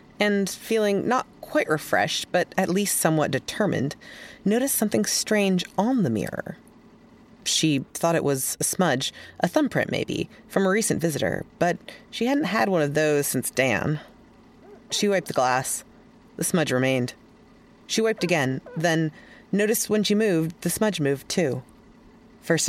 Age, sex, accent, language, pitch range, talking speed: 30-49, female, American, English, 150-225 Hz, 155 wpm